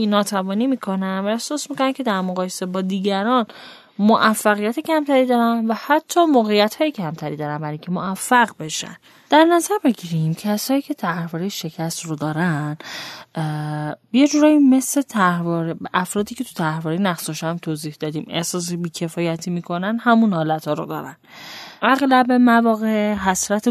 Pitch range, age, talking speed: 165-245 Hz, 10-29, 135 wpm